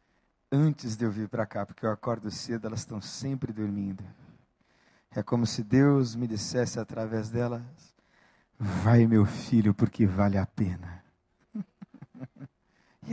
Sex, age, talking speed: male, 50-69, 135 wpm